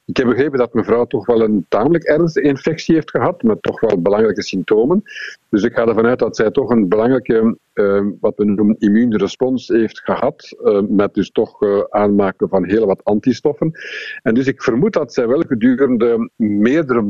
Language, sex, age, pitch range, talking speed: Dutch, male, 50-69, 105-165 Hz, 190 wpm